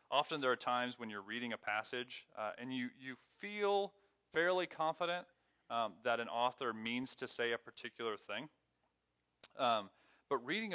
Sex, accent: male, American